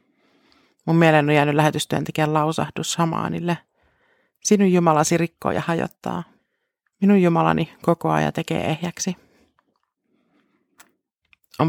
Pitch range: 155-180 Hz